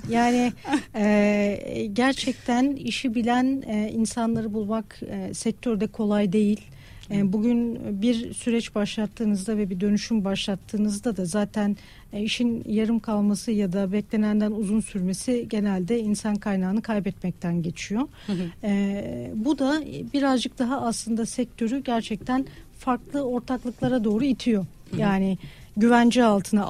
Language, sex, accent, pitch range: Turkish, female, native, 205-245 Hz